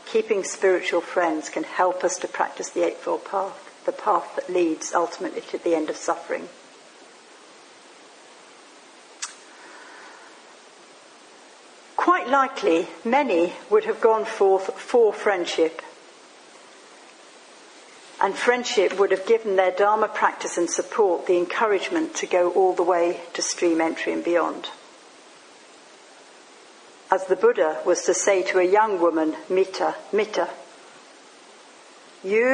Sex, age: female, 60-79